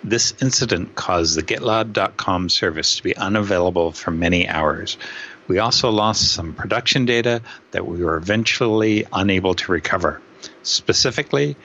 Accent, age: American, 60-79